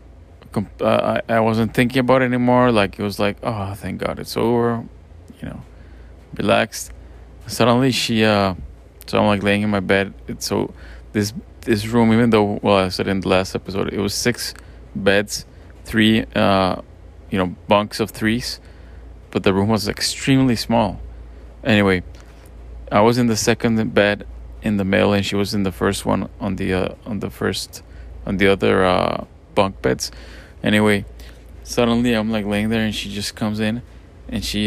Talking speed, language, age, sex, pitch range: 180 wpm, English, 30-49, male, 85-110 Hz